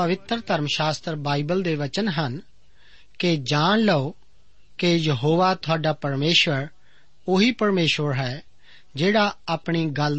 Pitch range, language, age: 145-190 Hz, Punjabi, 40-59